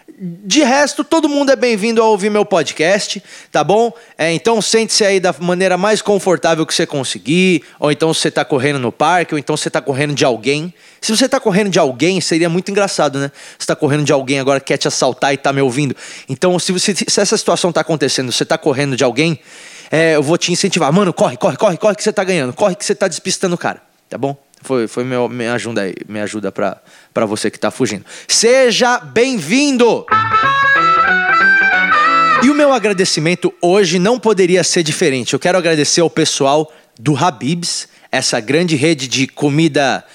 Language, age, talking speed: Portuguese, 20-39, 195 wpm